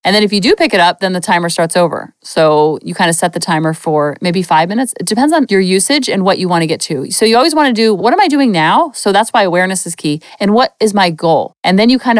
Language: English